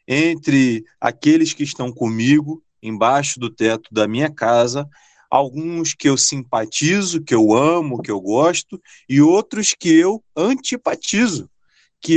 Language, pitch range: Portuguese, 125-170 Hz